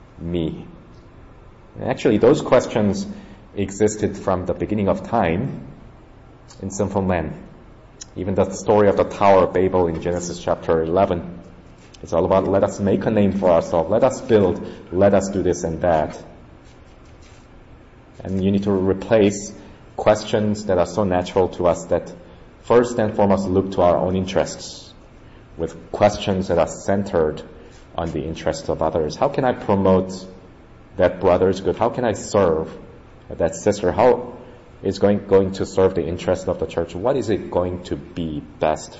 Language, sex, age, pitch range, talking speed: English, male, 30-49, 85-100 Hz, 165 wpm